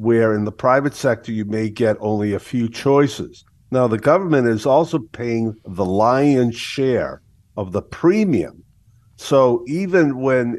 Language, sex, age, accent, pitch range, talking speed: English, male, 50-69, American, 105-130 Hz, 155 wpm